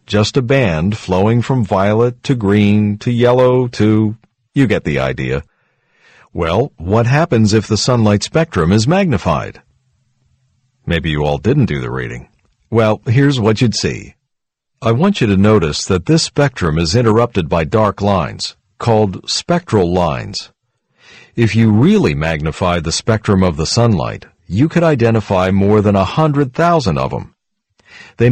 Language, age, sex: Chinese, 50-69, male